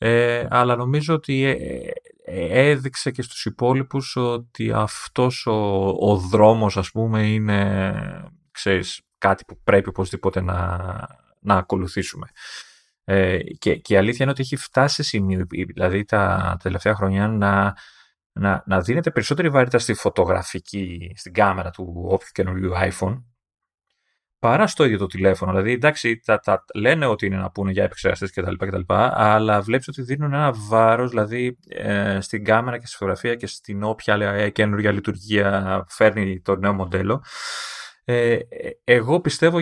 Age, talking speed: 30-49, 155 wpm